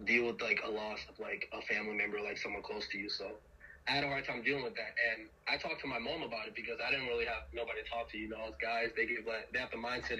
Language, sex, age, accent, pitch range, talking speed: English, male, 20-39, American, 115-145 Hz, 300 wpm